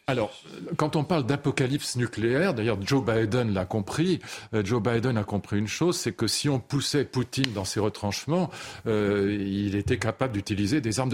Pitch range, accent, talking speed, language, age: 110-145 Hz, French, 185 wpm, French, 40-59